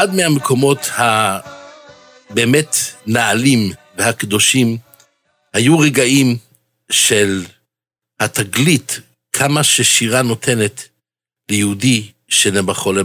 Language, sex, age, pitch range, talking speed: Hebrew, male, 60-79, 90-130 Hz, 65 wpm